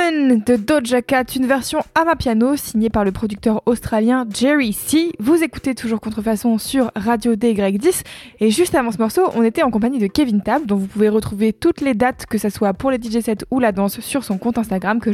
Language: French